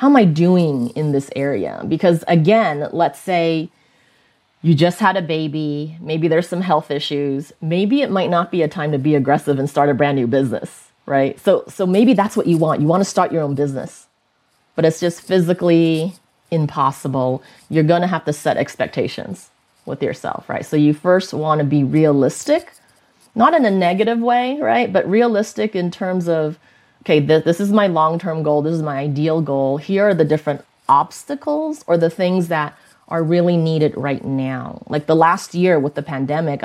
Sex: female